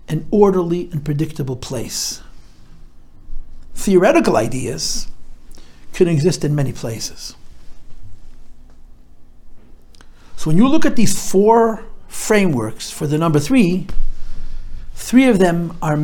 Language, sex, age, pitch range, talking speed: English, male, 60-79, 140-200 Hz, 105 wpm